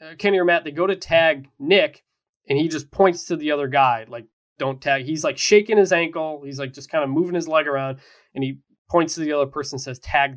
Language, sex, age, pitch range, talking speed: English, male, 20-39, 135-195 Hz, 245 wpm